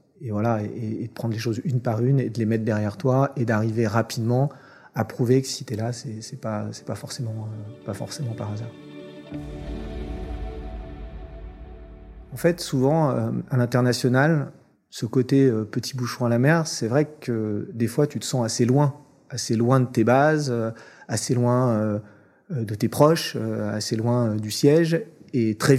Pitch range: 115-140 Hz